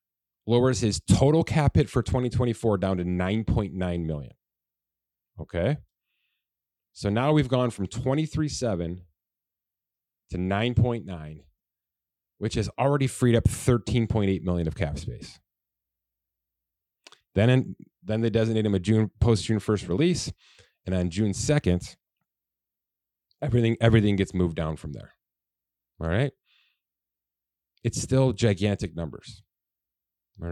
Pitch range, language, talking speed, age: 85-115 Hz, English, 115 wpm, 30-49